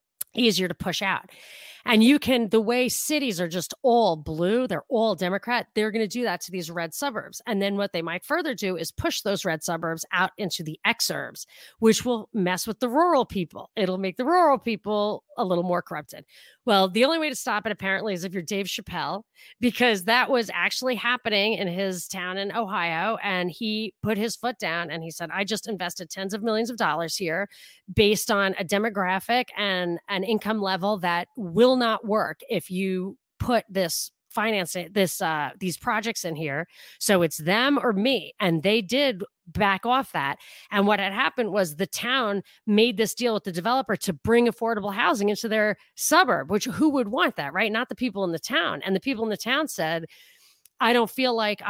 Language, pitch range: English, 185-235 Hz